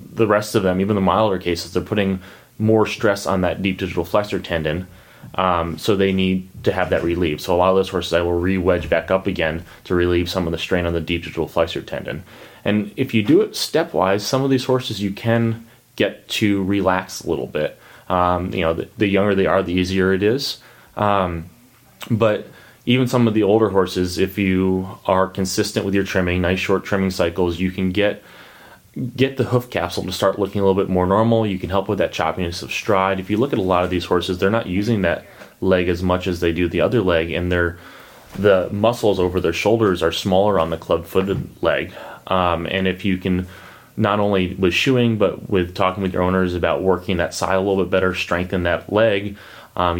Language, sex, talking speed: English, male, 220 wpm